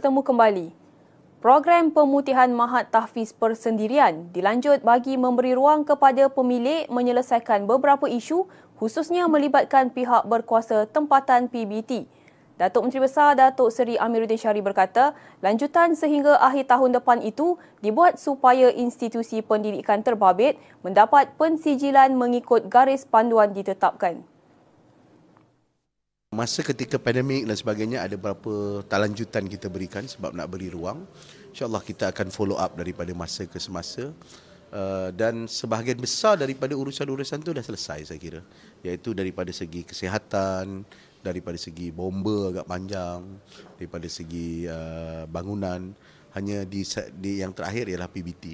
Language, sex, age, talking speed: Malay, female, 20-39, 120 wpm